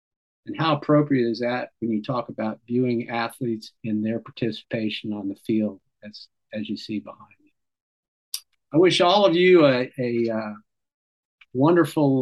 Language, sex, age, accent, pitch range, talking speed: English, male, 50-69, American, 115-145 Hz, 155 wpm